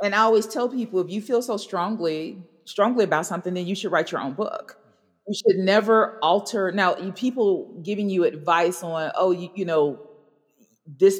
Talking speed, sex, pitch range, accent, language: 190 wpm, female, 155-205 Hz, American, English